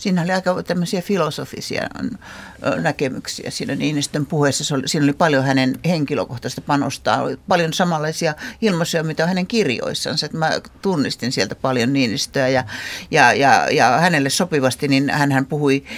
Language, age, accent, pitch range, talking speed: Finnish, 60-79, native, 130-170 Hz, 130 wpm